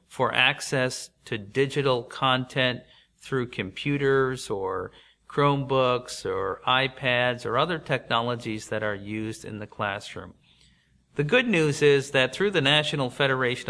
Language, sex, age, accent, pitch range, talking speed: English, male, 50-69, American, 120-140 Hz, 125 wpm